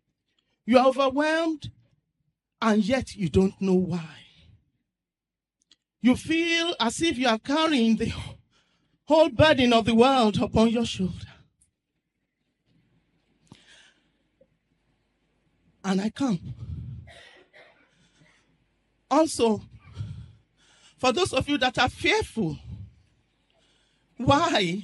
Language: English